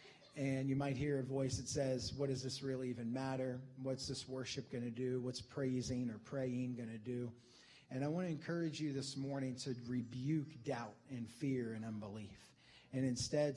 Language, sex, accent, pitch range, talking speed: English, male, American, 125-145 Hz, 195 wpm